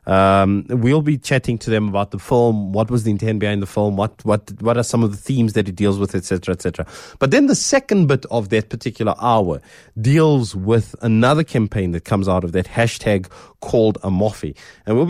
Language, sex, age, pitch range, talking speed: English, male, 20-39, 95-120 Hz, 215 wpm